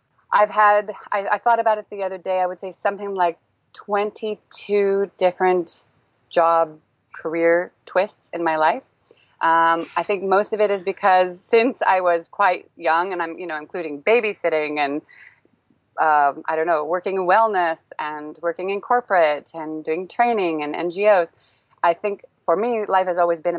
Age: 30-49